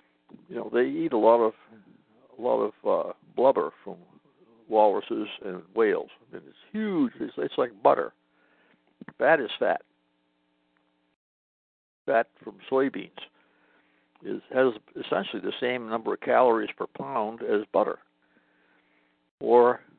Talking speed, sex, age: 130 wpm, male, 60-79